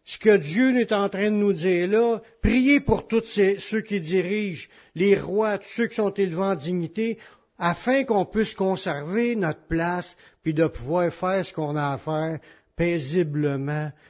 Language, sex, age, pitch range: French, male, 60-79, 155-205 Hz